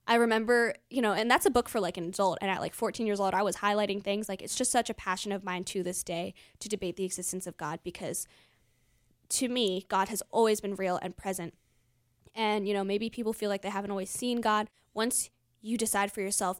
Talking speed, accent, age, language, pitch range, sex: 240 wpm, American, 10-29, English, 190-225 Hz, female